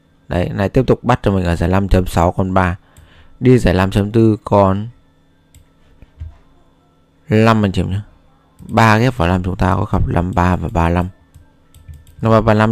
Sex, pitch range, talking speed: male, 85-105 Hz, 145 wpm